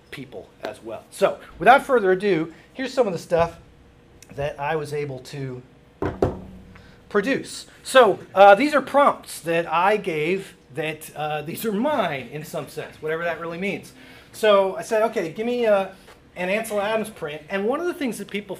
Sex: male